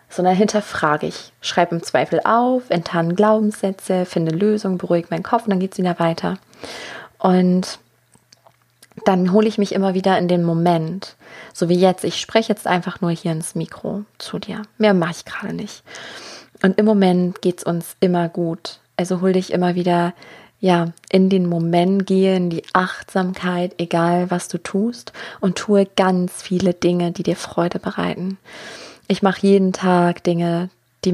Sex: female